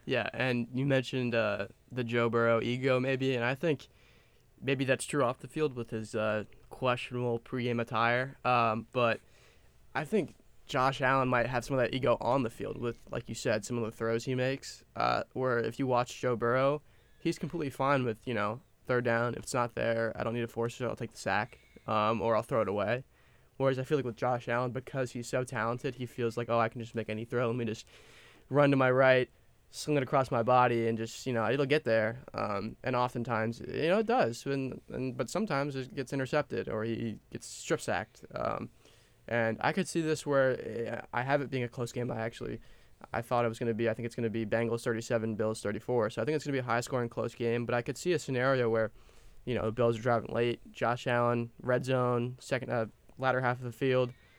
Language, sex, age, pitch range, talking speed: English, male, 20-39, 115-130 Hz, 235 wpm